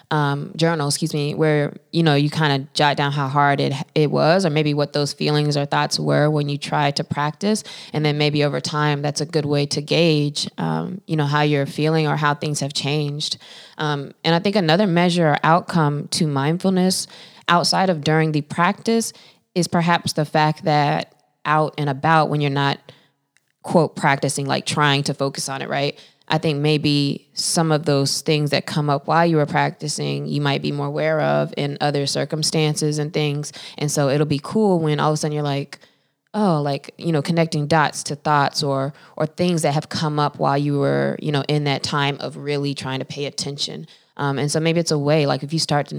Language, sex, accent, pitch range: English, female, American, 140-160 Hz